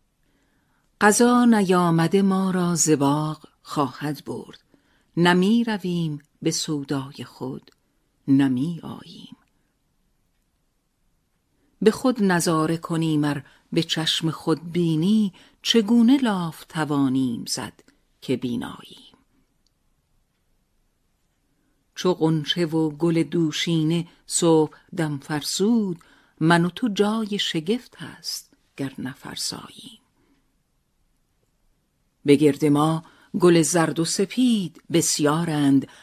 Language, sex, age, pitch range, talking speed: Persian, female, 50-69, 150-195 Hz, 85 wpm